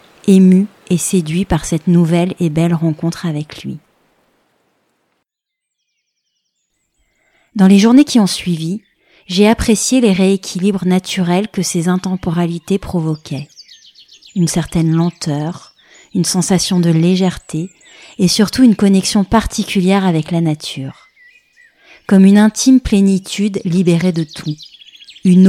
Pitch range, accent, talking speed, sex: 165-195 Hz, French, 115 wpm, female